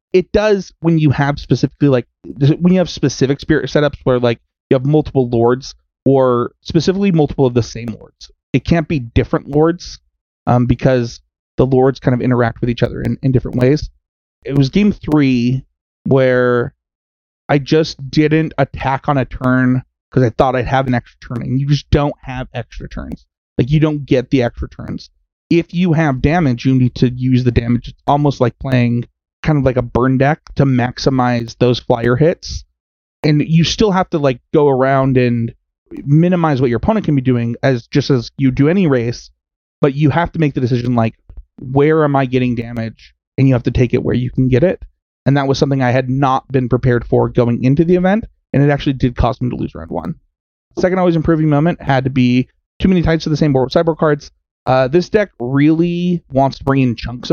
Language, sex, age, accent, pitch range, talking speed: English, male, 30-49, American, 120-150 Hz, 210 wpm